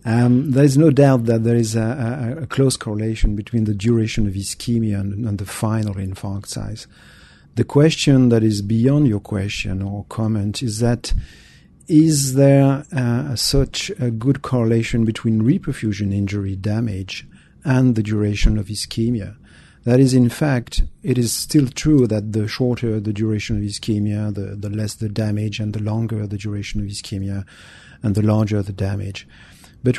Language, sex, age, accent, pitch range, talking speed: English, male, 40-59, French, 105-125 Hz, 165 wpm